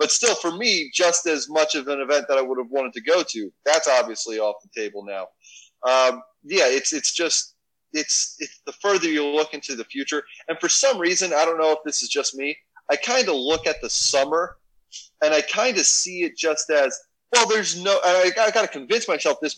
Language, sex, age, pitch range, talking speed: English, male, 30-49, 135-185 Hz, 230 wpm